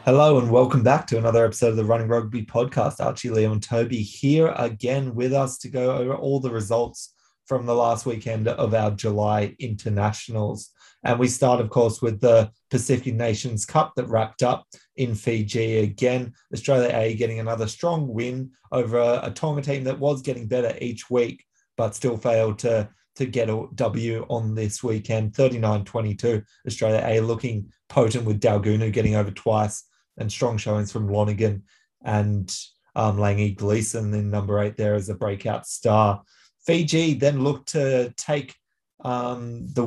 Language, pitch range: English, 110-125 Hz